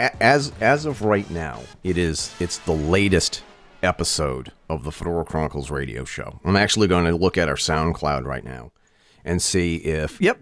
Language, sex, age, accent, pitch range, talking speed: English, male, 40-59, American, 80-105 Hz, 180 wpm